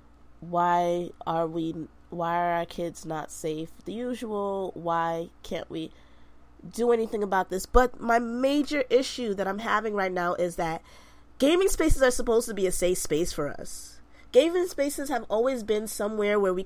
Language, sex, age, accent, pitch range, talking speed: English, female, 20-39, American, 195-255 Hz, 175 wpm